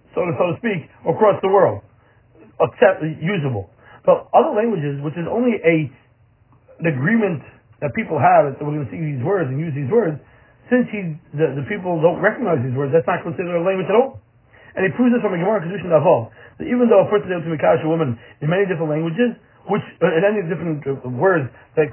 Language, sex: English, male